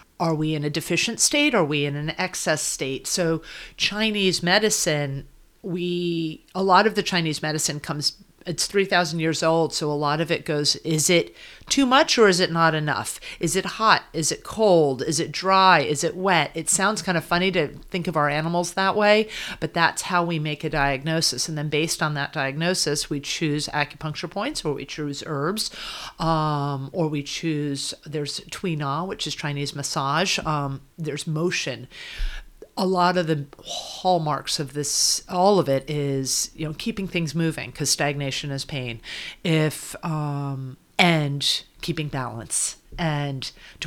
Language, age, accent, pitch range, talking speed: English, 40-59, American, 145-175 Hz, 175 wpm